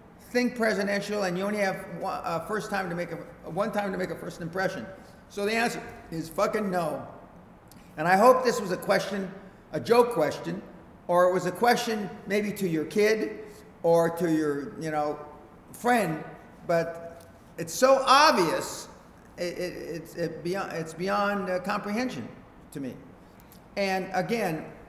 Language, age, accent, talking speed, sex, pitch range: English, 50-69, American, 145 wpm, male, 150-190 Hz